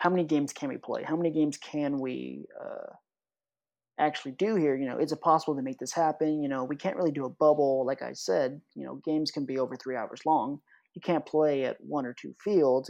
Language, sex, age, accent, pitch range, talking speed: English, male, 30-49, American, 145-205 Hz, 240 wpm